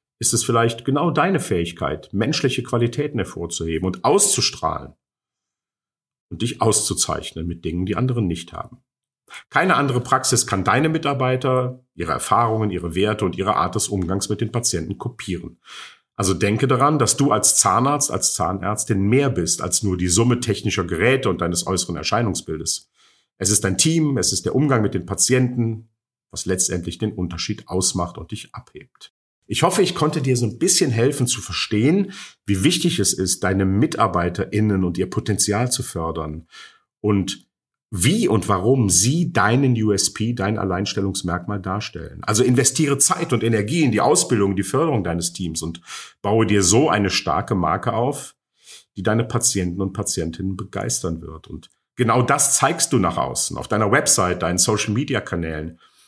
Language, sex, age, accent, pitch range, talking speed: German, male, 50-69, German, 95-125 Hz, 165 wpm